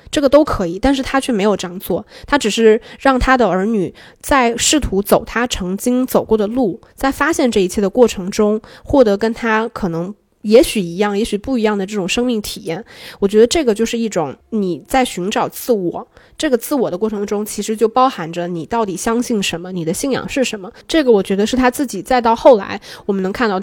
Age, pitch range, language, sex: 20-39, 195-255 Hz, Chinese, female